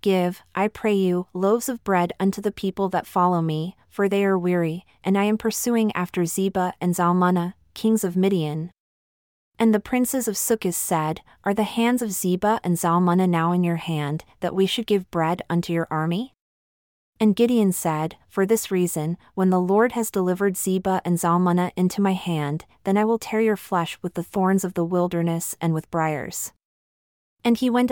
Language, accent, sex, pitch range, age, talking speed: English, American, female, 175-205 Hz, 30-49, 190 wpm